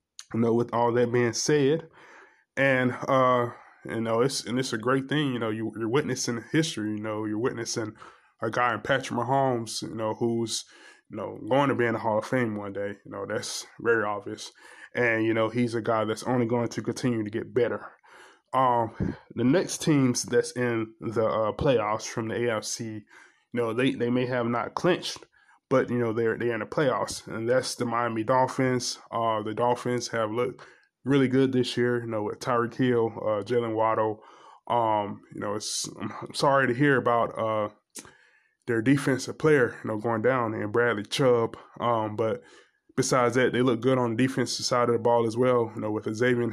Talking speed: 200 wpm